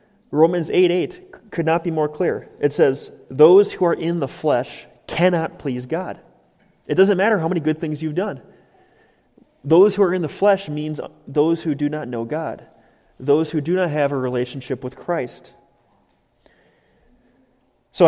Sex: male